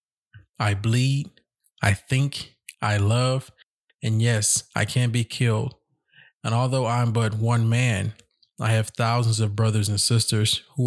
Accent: American